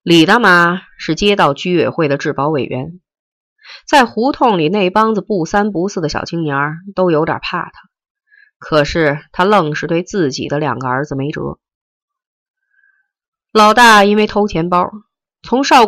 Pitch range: 155-235 Hz